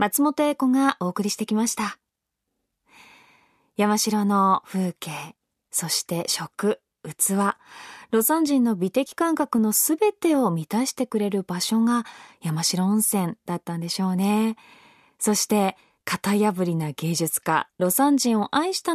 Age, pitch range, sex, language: 20-39, 200-290 Hz, female, Japanese